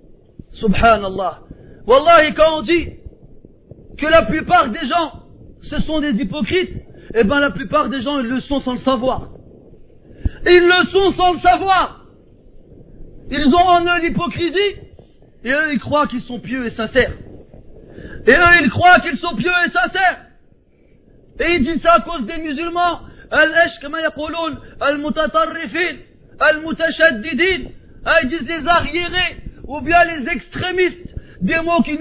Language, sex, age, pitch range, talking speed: French, male, 40-59, 270-340 Hz, 140 wpm